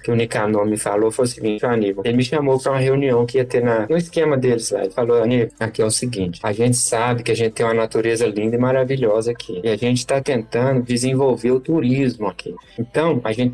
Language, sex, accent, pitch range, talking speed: Portuguese, male, Brazilian, 120-160 Hz, 255 wpm